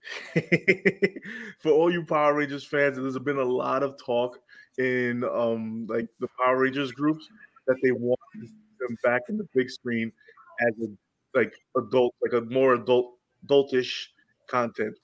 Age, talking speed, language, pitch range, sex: 20-39, 150 wpm, English, 120-145 Hz, male